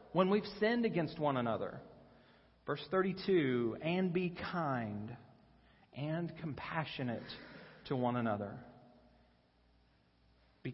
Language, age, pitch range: English, 40-59, 110-150 Hz